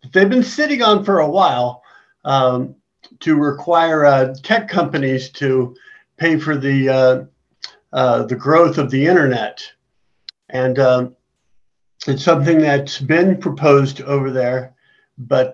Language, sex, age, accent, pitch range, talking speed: English, male, 50-69, American, 130-160 Hz, 130 wpm